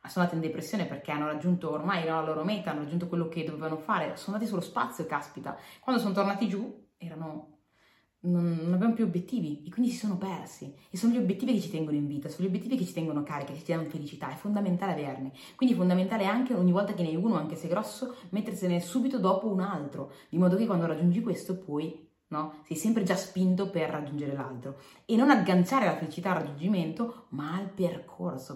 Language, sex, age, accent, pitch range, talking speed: Italian, female, 30-49, native, 160-225 Hz, 220 wpm